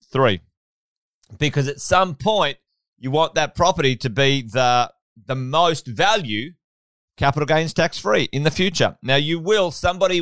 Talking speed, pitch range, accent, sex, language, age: 155 wpm, 125-160 Hz, Australian, male, English, 30-49